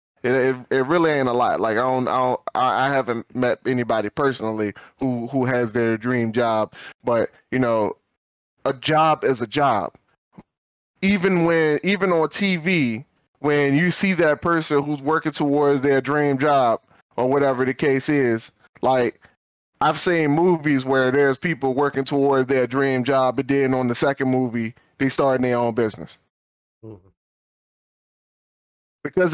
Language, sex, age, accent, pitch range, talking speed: English, male, 10-29, American, 130-160 Hz, 155 wpm